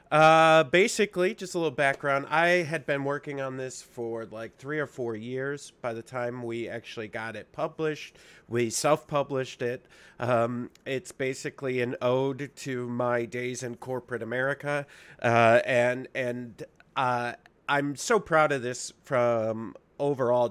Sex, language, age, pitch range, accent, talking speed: male, English, 30-49, 120-145 Hz, American, 150 wpm